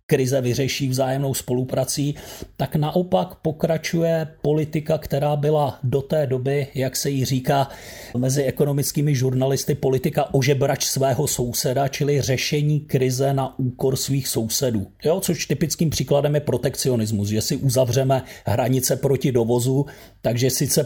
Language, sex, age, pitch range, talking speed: Slovak, male, 40-59, 130-155 Hz, 130 wpm